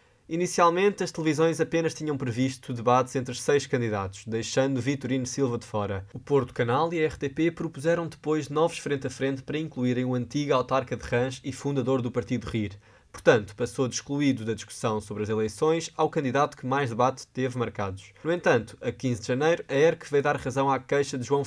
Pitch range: 120-150 Hz